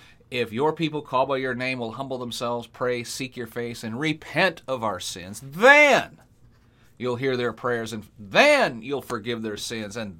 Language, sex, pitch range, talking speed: English, male, 115-155 Hz, 185 wpm